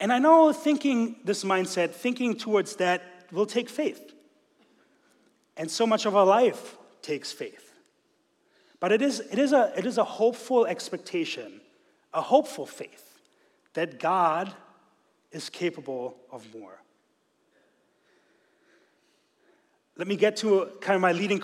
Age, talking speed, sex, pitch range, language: 30-49, 135 wpm, male, 155-230 Hz, English